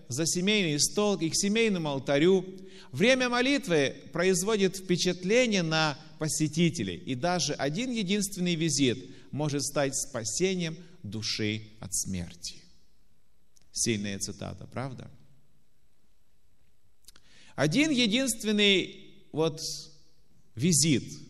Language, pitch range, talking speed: Russian, 140-205 Hz, 85 wpm